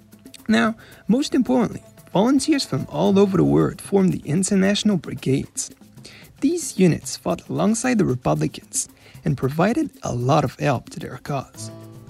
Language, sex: English, male